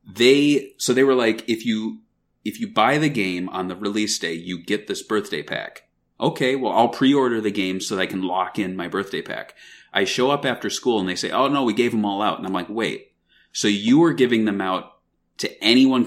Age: 30-49